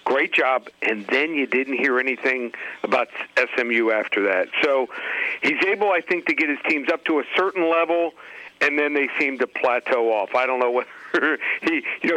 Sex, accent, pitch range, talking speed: male, American, 135-165 Hz, 180 wpm